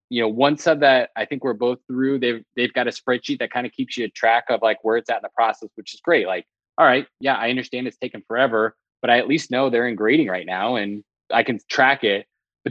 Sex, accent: male, American